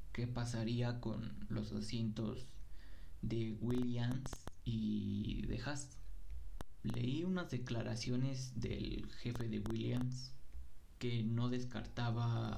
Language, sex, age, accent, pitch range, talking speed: Spanish, male, 20-39, Mexican, 105-125 Hz, 95 wpm